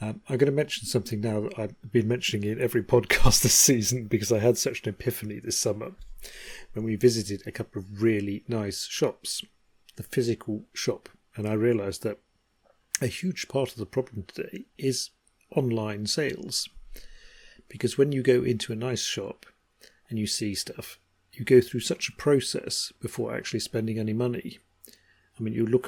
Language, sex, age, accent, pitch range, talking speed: English, male, 40-59, British, 110-130 Hz, 180 wpm